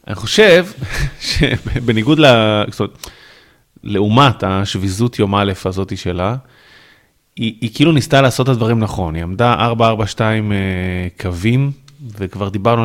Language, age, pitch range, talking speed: Hebrew, 30-49, 95-125 Hz, 120 wpm